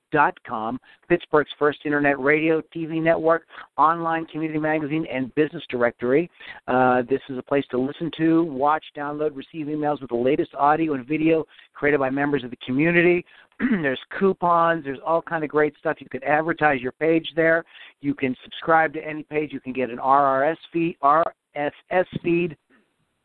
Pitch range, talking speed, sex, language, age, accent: 140-165 Hz, 170 wpm, male, English, 50-69, American